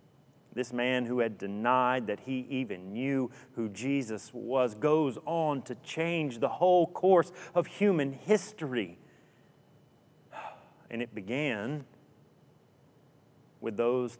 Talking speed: 115 wpm